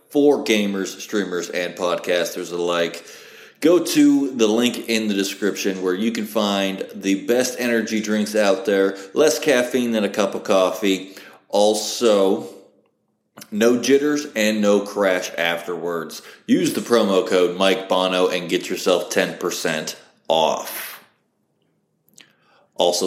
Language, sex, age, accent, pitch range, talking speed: English, male, 30-49, American, 95-115 Hz, 125 wpm